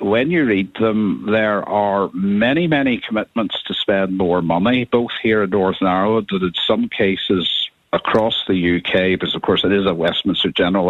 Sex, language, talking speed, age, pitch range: male, English, 180 wpm, 60-79, 95-110 Hz